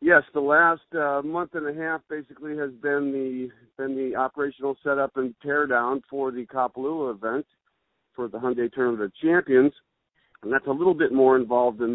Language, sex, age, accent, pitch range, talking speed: English, male, 50-69, American, 110-140 Hz, 185 wpm